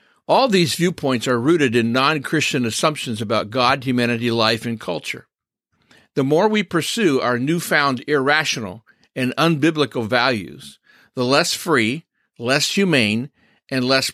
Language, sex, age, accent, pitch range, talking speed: English, male, 50-69, American, 115-160 Hz, 135 wpm